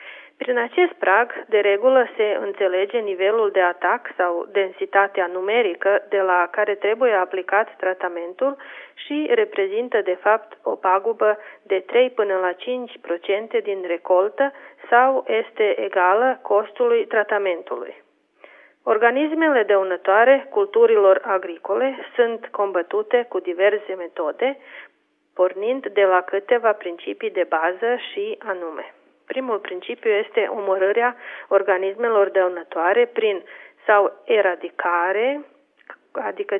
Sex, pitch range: female, 185-260 Hz